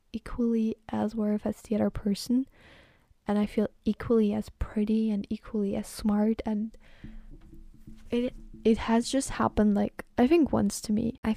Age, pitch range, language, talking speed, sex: 10-29, 205-235 Hz, German, 160 wpm, female